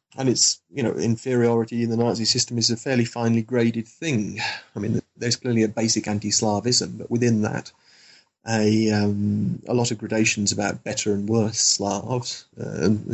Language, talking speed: English, 170 wpm